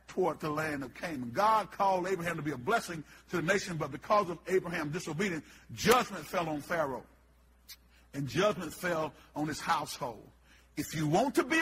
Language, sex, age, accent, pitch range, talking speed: English, male, 50-69, American, 180-250 Hz, 175 wpm